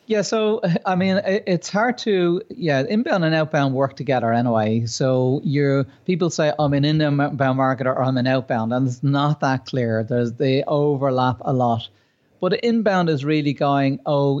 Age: 30-49